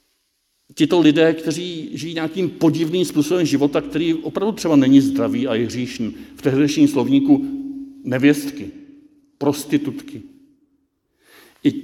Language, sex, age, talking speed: Czech, male, 60-79, 110 wpm